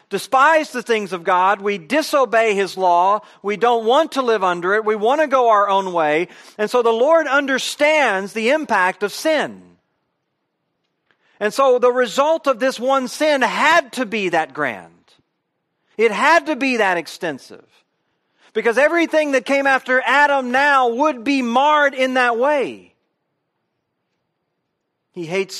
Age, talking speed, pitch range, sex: 40-59, 155 wpm, 165-250 Hz, male